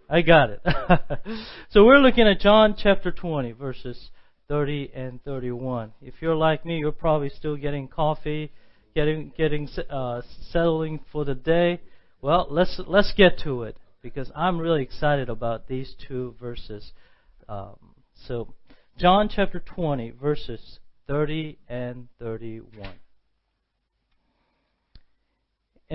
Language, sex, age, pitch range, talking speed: English, male, 40-59, 125-180 Hz, 125 wpm